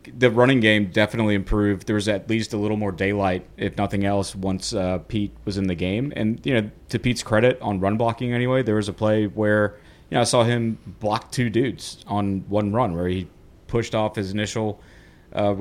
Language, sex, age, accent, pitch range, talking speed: English, male, 30-49, American, 95-110 Hz, 215 wpm